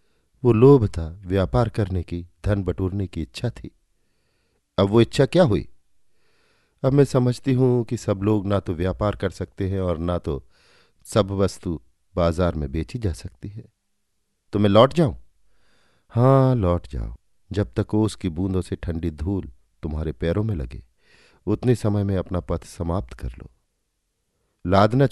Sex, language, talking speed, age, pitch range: male, Hindi, 160 wpm, 50-69, 80-110 Hz